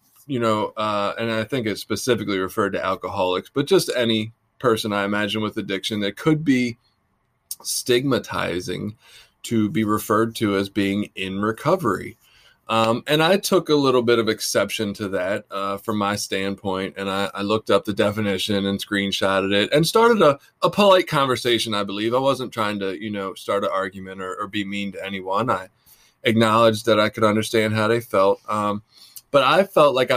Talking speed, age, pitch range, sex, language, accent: 185 wpm, 20-39, 105-125 Hz, male, English, American